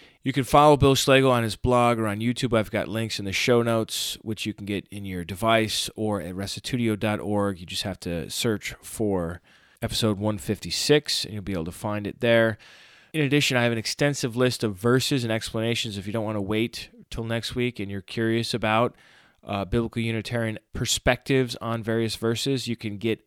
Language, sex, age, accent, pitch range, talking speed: English, male, 30-49, American, 100-120 Hz, 200 wpm